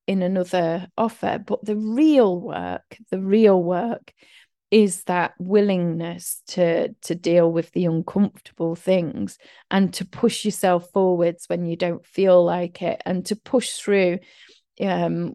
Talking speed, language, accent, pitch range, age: 140 wpm, English, British, 175-215 Hz, 30-49